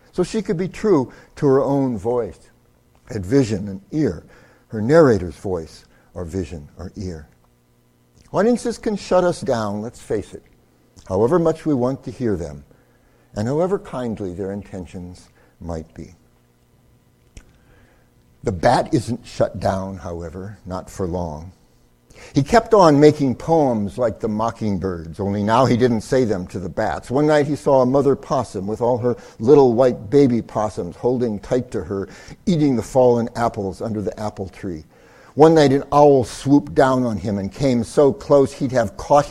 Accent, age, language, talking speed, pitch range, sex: American, 60-79, English, 165 wpm, 95-135 Hz, male